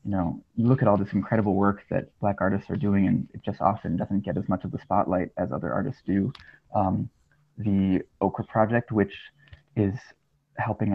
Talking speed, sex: 195 wpm, male